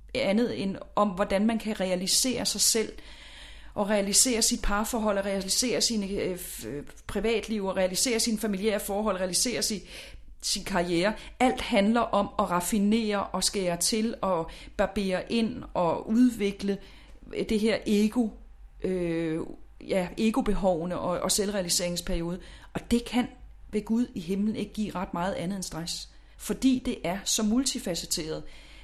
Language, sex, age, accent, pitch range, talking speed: English, female, 30-49, Danish, 180-230 Hz, 140 wpm